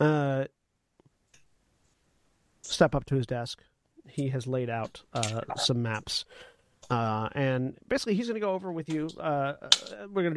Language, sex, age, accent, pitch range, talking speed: English, male, 40-59, American, 125-165 Hz, 155 wpm